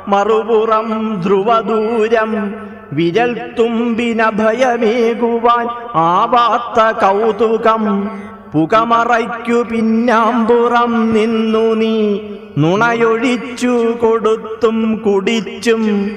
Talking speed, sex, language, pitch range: 50 wpm, male, Malayalam, 205-230 Hz